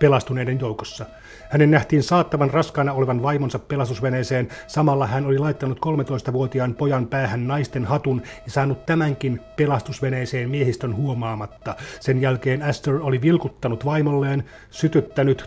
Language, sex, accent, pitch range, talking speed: Finnish, male, native, 125-145 Hz, 120 wpm